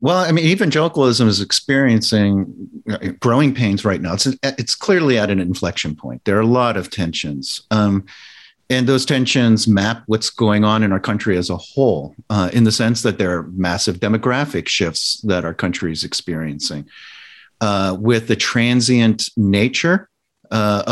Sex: male